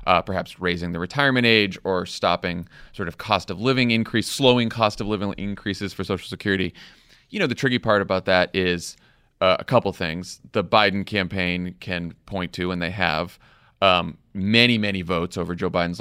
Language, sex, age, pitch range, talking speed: English, male, 30-49, 90-120 Hz, 185 wpm